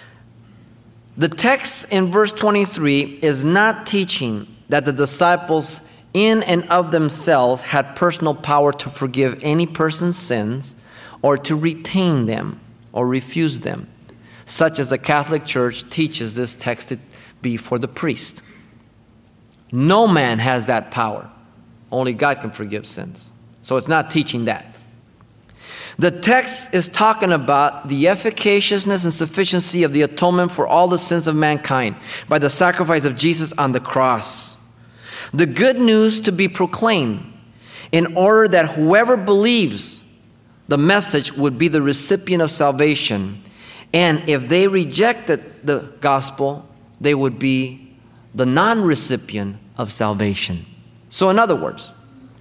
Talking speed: 135 wpm